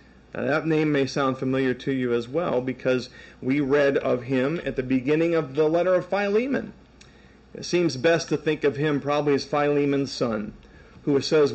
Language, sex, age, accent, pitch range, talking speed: English, male, 40-59, American, 130-170 Hz, 190 wpm